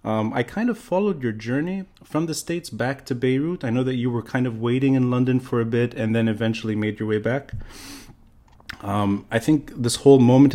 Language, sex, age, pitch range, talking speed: English, male, 30-49, 110-135 Hz, 220 wpm